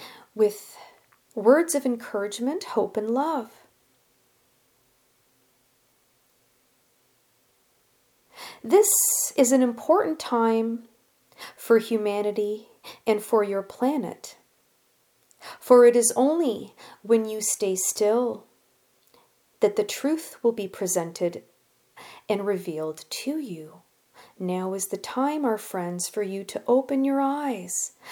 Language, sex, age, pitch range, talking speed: English, female, 40-59, 205-275 Hz, 100 wpm